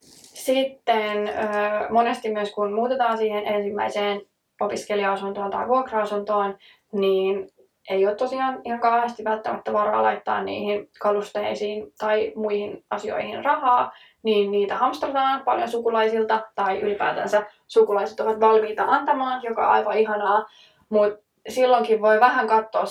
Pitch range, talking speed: 200-235 Hz, 115 wpm